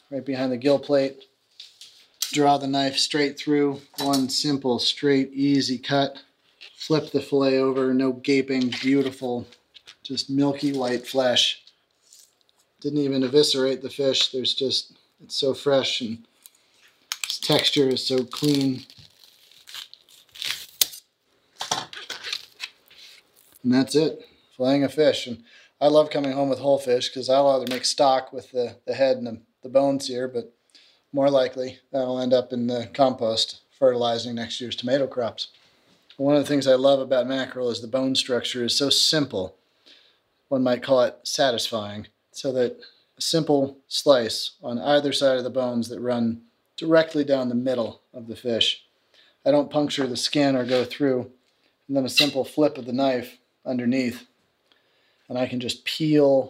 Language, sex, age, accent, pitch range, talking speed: English, male, 30-49, American, 125-140 Hz, 155 wpm